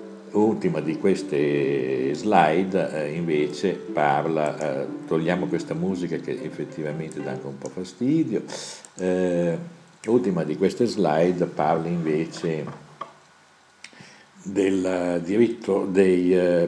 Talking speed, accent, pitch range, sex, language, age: 105 wpm, native, 80-100 Hz, male, Italian, 60-79